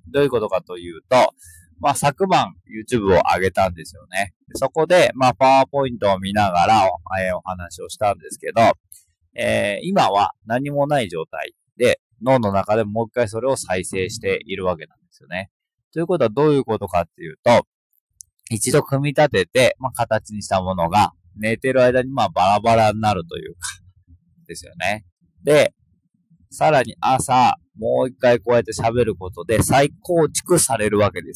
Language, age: Japanese, 20-39